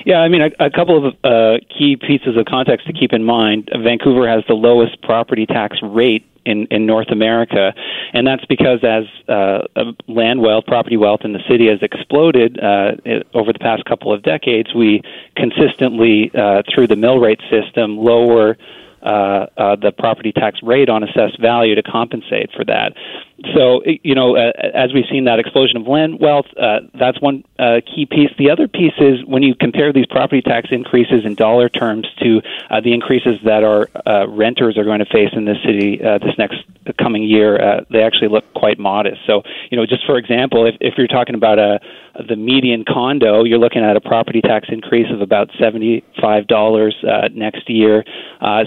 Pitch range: 110-130 Hz